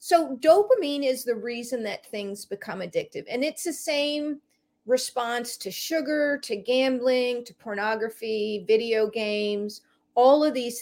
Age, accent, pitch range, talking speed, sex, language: 40-59, American, 215-315 Hz, 140 wpm, female, English